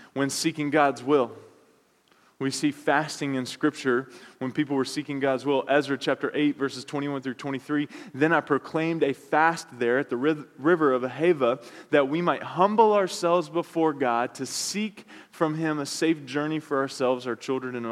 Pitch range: 125-150 Hz